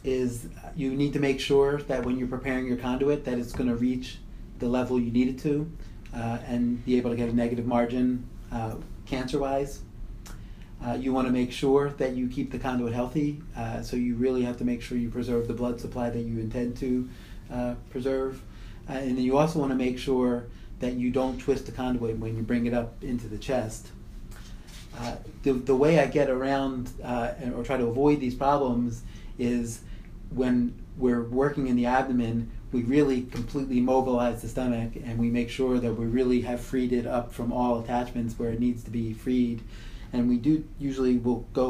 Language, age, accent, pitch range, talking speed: English, 30-49, American, 115-130 Hz, 205 wpm